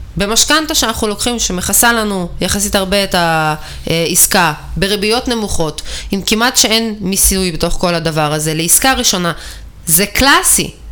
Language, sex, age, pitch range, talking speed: Hebrew, female, 20-39, 180-250 Hz, 125 wpm